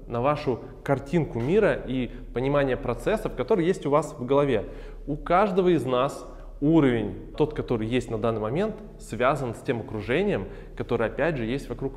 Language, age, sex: Russian, 20-39, male